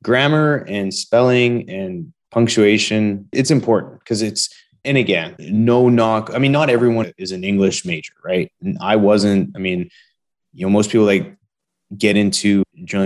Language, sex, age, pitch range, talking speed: English, male, 20-39, 100-130 Hz, 160 wpm